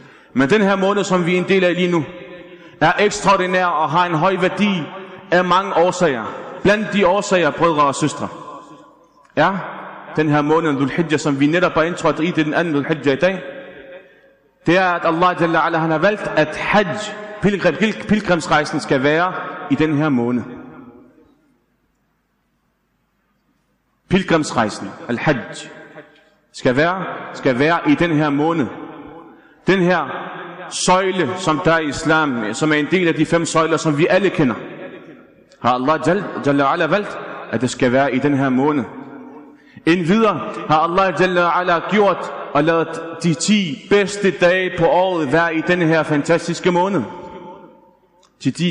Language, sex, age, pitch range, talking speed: Danish, male, 40-59, 155-185 Hz, 150 wpm